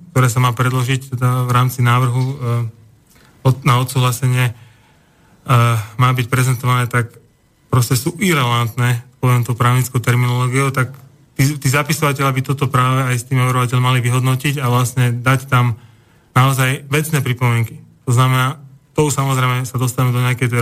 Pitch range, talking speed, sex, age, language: 125-140 Hz, 150 wpm, male, 30-49, Slovak